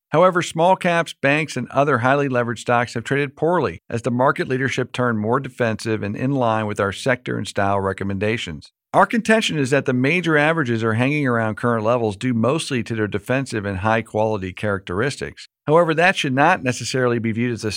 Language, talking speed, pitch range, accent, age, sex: English, 190 wpm, 110-145 Hz, American, 50-69, male